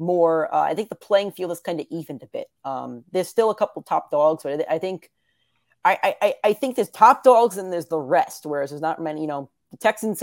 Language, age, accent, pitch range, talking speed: English, 30-49, American, 145-185 Hz, 245 wpm